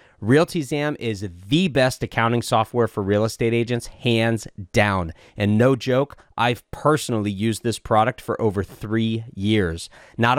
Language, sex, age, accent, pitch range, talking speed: English, male, 30-49, American, 110-140 Hz, 150 wpm